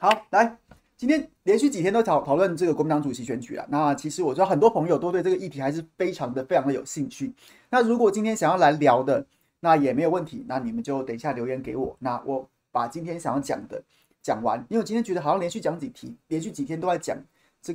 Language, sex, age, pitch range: Chinese, male, 30-49, 140-185 Hz